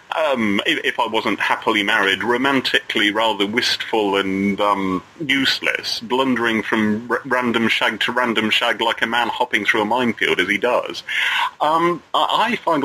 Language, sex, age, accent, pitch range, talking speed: English, male, 30-49, British, 115-165 Hz, 165 wpm